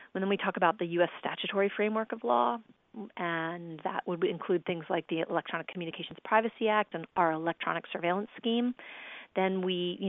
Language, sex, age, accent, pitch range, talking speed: English, female, 40-59, American, 165-195 Hz, 180 wpm